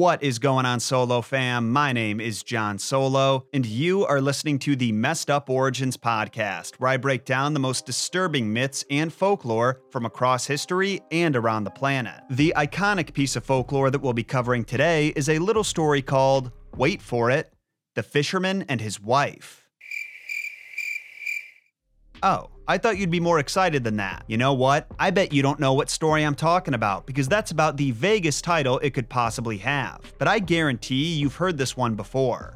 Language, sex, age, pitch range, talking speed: English, male, 30-49, 120-155 Hz, 185 wpm